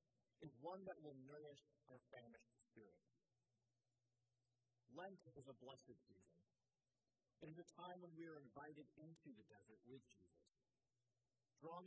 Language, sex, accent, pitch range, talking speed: English, male, American, 120-160 Hz, 135 wpm